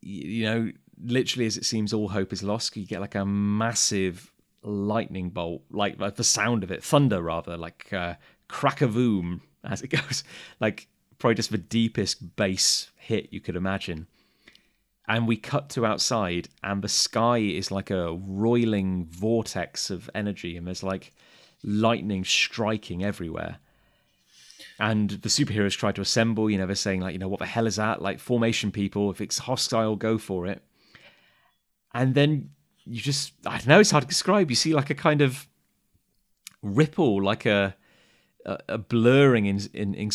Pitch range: 100-120 Hz